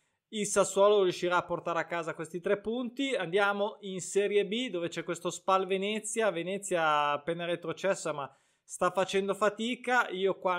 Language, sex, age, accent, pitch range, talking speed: Italian, male, 20-39, native, 150-205 Hz, 160 wpm